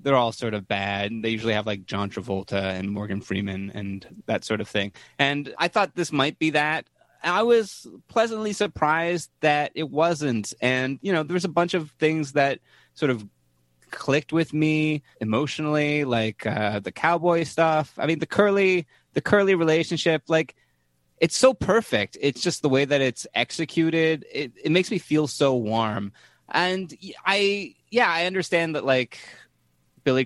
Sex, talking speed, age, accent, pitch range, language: male, 175 wpm, 20-39, American, 105-160 Hz, English